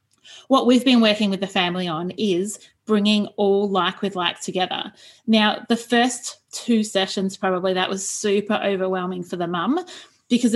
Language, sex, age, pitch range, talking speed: English, female, 30-49, 185-230 Hz, 165 wpm